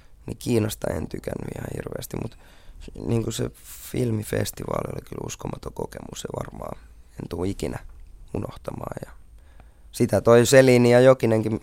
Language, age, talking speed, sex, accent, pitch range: Finnish, 20-39, 140 wpm, male, native, 95-115 Hz